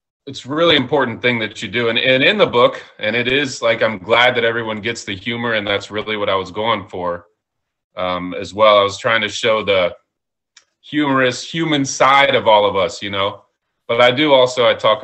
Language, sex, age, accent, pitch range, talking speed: English, male, 30-49, American, 105-140 Hz, 220 wpm